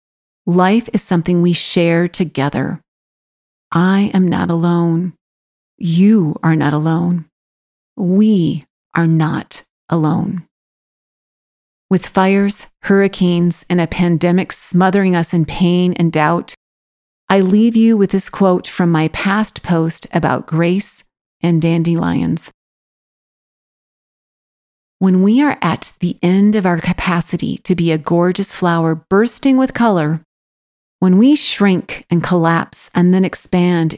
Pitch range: 165-195 Hz